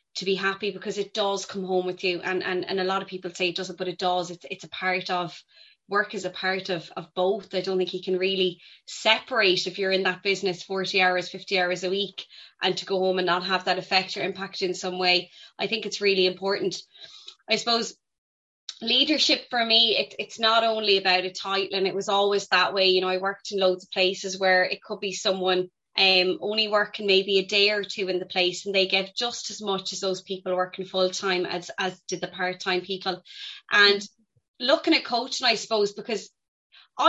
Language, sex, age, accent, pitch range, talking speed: English, female, 20-39, Irish, 185-215 Hz, 225 wpm